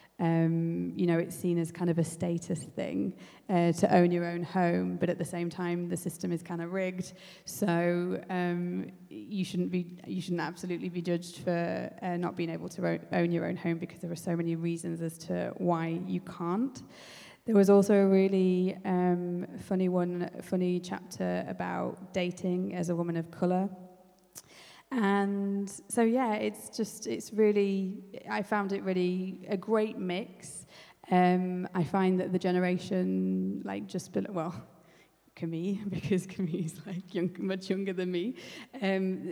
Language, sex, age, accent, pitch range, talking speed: English, female, 20-39, British, 170-190 Hz, 165 wpm